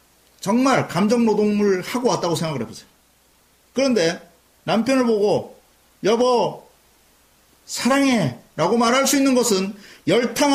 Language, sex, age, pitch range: Korean, male, 40-59, 165-250 Hz